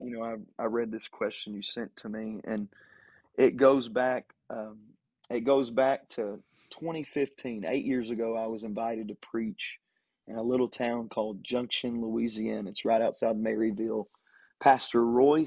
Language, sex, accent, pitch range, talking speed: English, male, American, 110-130 Hz, 165 wpm